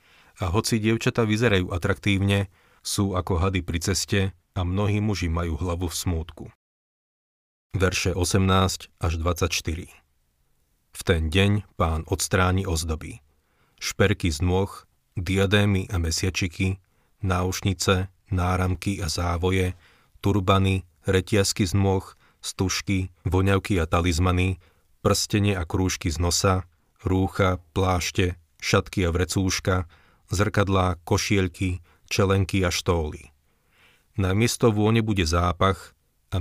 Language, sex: Slovak, male